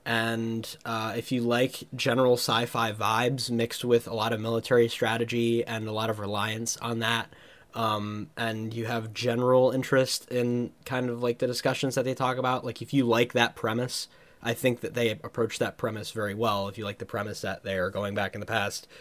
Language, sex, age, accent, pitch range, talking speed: English, male, 10-29, American, 110-130 Hz, 210 wpm